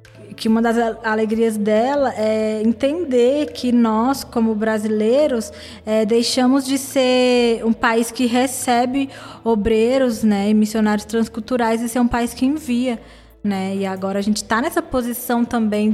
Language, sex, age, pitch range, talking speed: Portuguese, female, 20-39, 205-240 Hz, 145 wpm